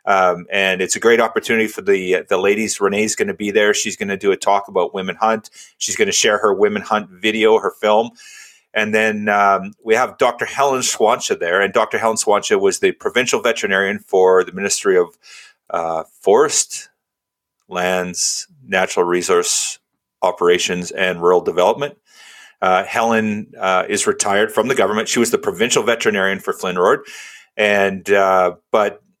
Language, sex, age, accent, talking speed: English, male, 30-49, American, 170 wpm